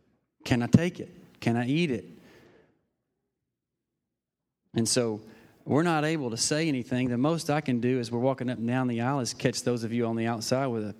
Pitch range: 110-130 Hz